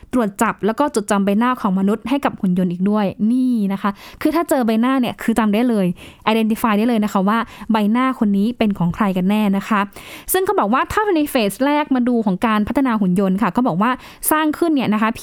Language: Thai